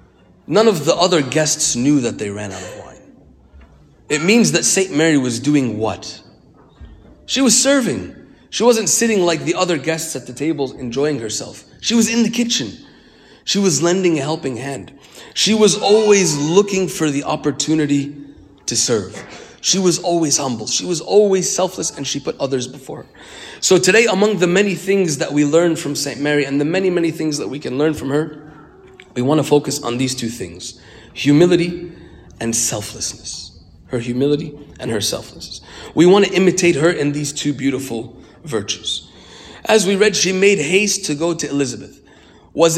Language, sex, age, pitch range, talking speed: English, male, 30-49, 135-175 Hz, 180 wpm